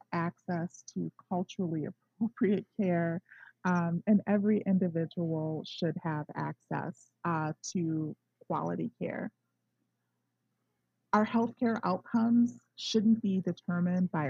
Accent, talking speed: American, 100 wpm